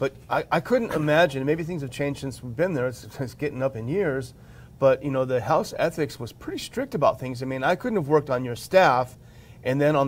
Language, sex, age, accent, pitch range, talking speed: English, male, 40-59, American, 125-155 Hz, 250 wpm